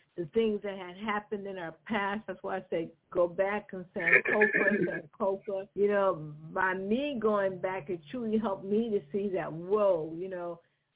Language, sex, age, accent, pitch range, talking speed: English, female, 50-69, American, 190-225 Hz, 175 wpm